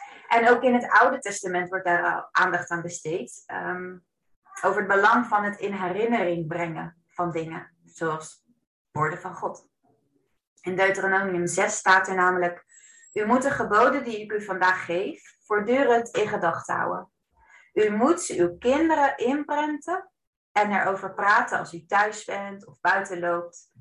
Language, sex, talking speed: Dutch, female, 150 wpm